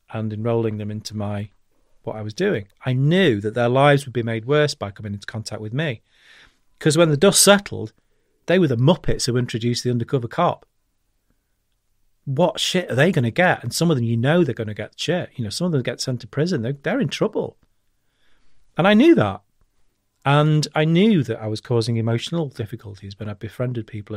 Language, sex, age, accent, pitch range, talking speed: English, male, 40-59, British, 110-165 Hz, 215 wpm